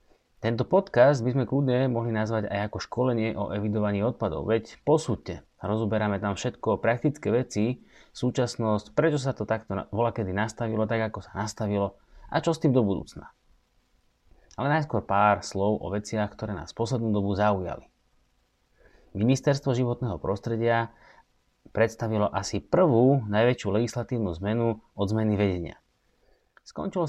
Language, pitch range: Slovak, 100-125 Hz